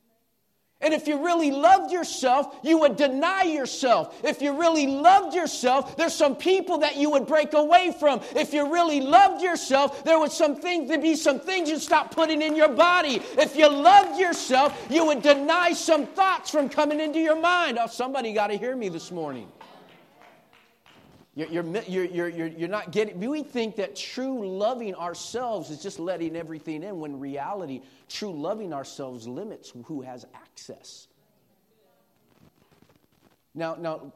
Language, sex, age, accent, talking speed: English, male, 40-59, American, 160 wpm